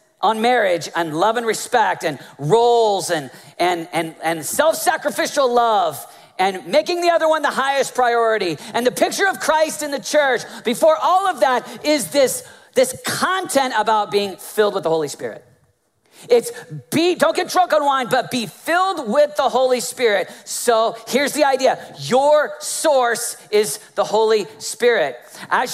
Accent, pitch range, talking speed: American, 220-310 Hz, 165 wpm